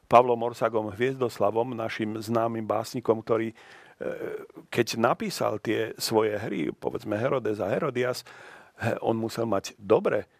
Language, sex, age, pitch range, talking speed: Slovak, male, 40-59, 105-125 Hz, 115 wpm